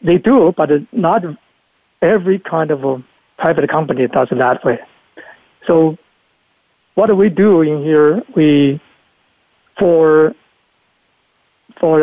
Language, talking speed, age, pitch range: English, 115 wpm, 60-79, 145-175 Hz